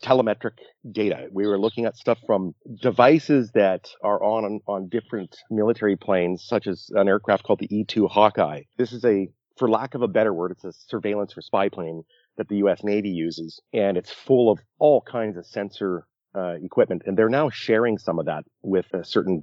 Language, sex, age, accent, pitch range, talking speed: English, male, 40-59, American, 100-120 Hz, 200 wpm